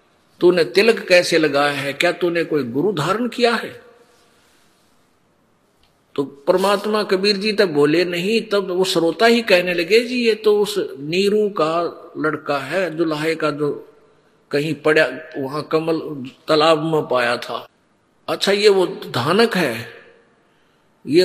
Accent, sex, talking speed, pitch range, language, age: native, male, 145 wpm, 150-190 Hz, Hindi, 50-69